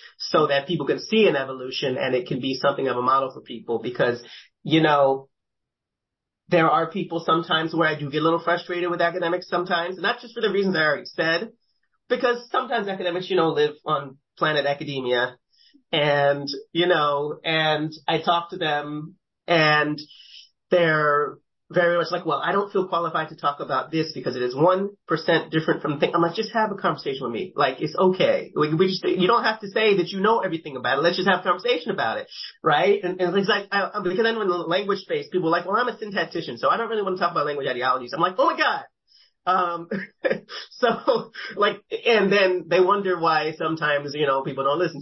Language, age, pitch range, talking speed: English, 30-49, 150-185 Hz, 220 wpm